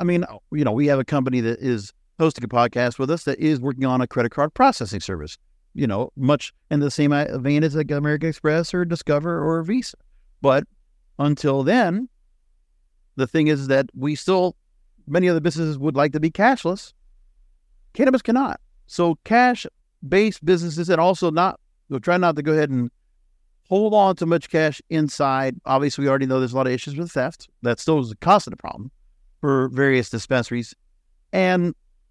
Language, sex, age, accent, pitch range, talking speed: English, male, 50-69, American, 125-170 Hz, 185 wpm